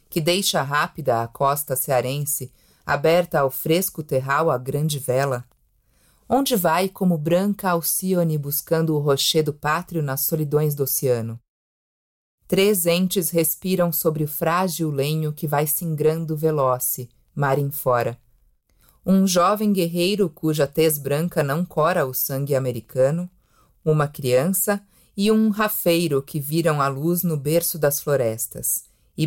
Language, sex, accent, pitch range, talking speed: English, female, Brazilian, 135-175 Hz, 135 wpm